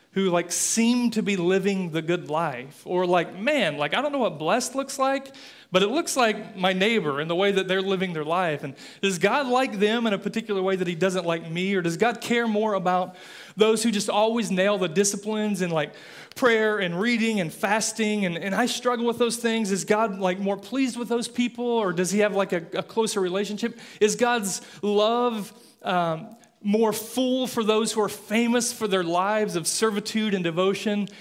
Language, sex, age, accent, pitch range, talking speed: English, male, 30-49, American, 175-220 Hz, 210 wpm